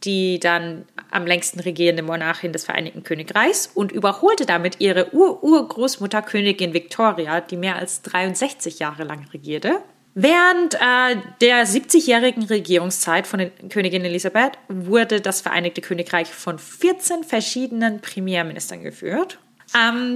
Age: 30-49